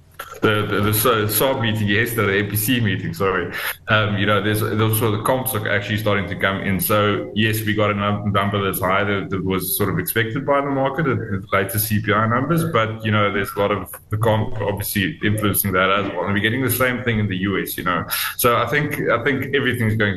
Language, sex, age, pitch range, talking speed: English, male, 20-39, 95-110 Hz, 230 wpm